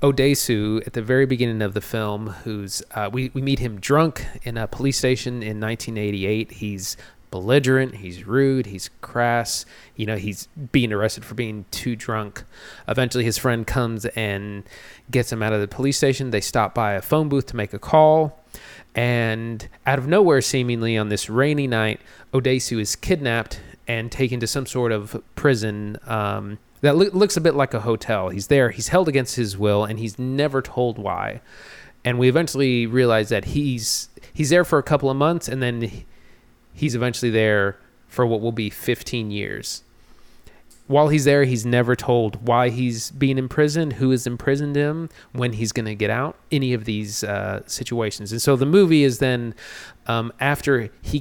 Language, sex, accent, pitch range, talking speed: English, male, American, 110-135 Hz, 180 wpm